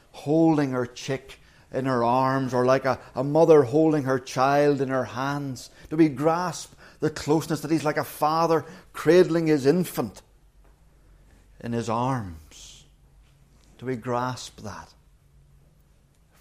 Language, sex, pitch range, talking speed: English, male, 115-170 Hz, 140 wpm